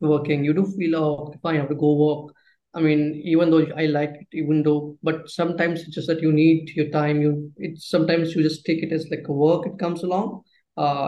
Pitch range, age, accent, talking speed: 150-175 Hz, 20-39, Indian, 240 wpm